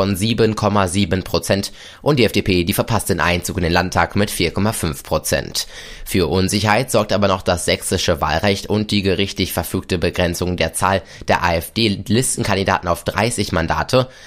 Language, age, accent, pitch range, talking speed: German, 20-39, German, 85-105 Hz, 145 wpm